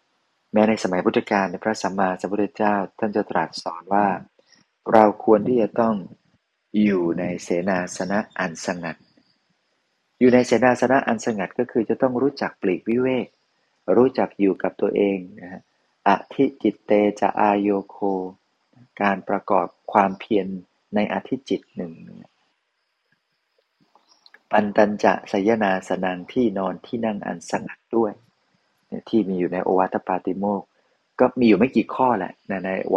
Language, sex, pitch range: Thai, male, 95-115 Hz